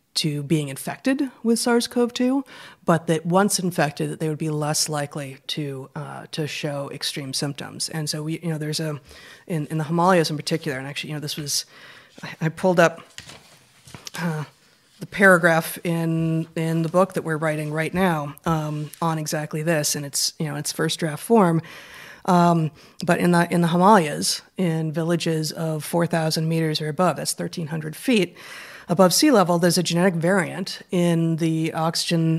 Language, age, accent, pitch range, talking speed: English, 30-49, American, 150-180 Hz, 175 wpm